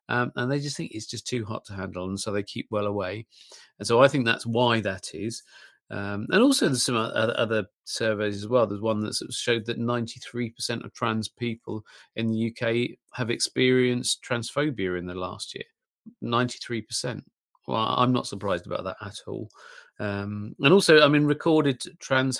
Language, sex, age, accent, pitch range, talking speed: English, male, 40-59, British, 110-135 Hz, 185 wpm